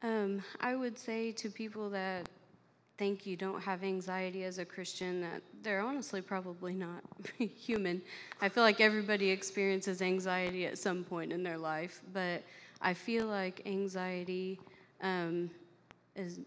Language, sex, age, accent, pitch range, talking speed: English, female, 30-49, American, 175-190 Hz, 145 wpm